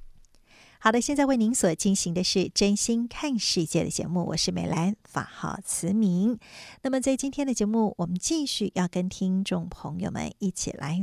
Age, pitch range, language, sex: 50-69, 180-235 Hz, Chinese, female